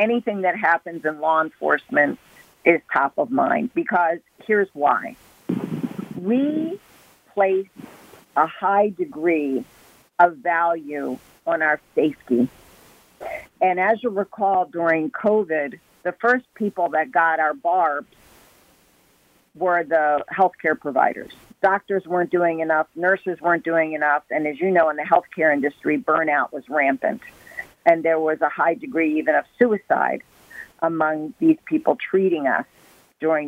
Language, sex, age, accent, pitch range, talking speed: English, female, 50-69, American, 155-205 Hz, 135 wpm